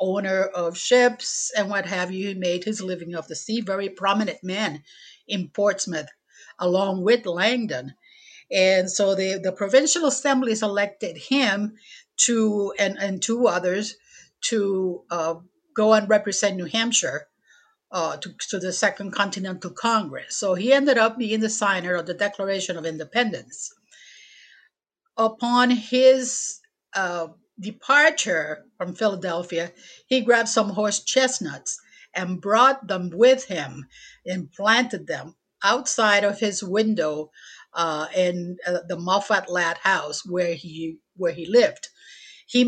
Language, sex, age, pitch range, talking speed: English, female, 50-69, 180-230 Hz, 135 wpm